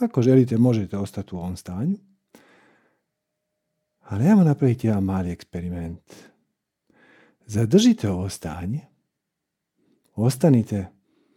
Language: Croatian